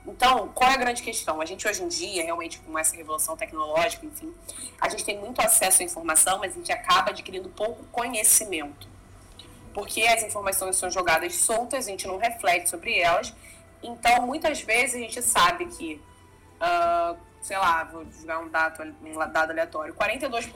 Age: 20-39